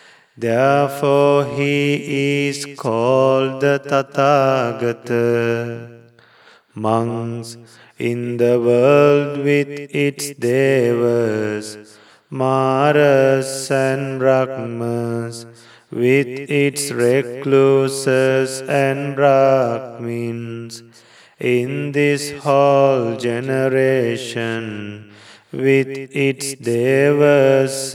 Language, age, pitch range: English, 30-49, 120-140 Hz